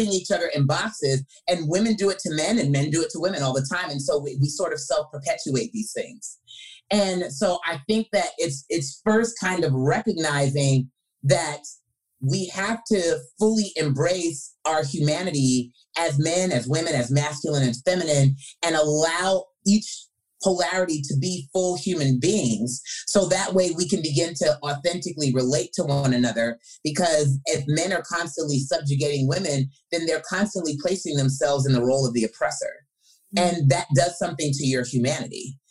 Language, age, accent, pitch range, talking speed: English, 30-49, American, 140-180 Hz, 170 wpm